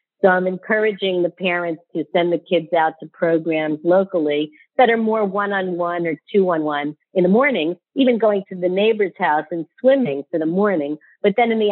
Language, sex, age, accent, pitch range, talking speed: English, female, 50-69, American, 170-210 Hz, 190 wpm